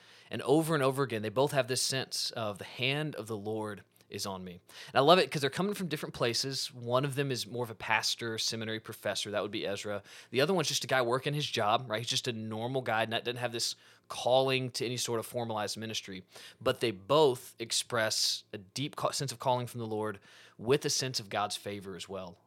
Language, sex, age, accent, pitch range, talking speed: English, male, 20-39, American, 110-135 Hz, 235 wpm